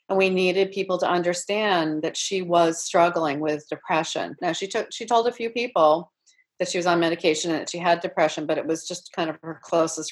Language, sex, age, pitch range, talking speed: English, female, 40-59, 160-195 Hz, 225 wpm